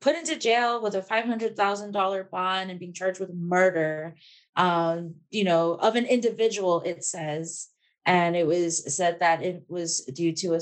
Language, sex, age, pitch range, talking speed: English, female, 20-39, 180-220 Hz, 170 wpm